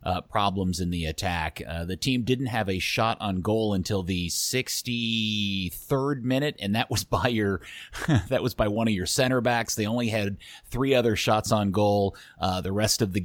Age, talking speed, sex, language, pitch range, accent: 30-49, 200 wpm, male, English, 100-125 Hz, American